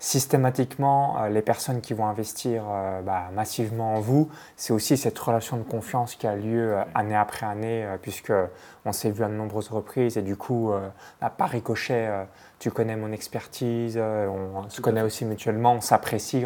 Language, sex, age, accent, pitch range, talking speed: French, male, 20-39, French, 110-130 Hz, 195 wpm